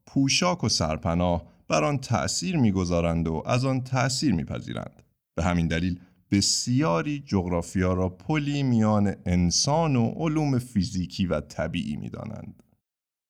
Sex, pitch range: male, 85-125 Hz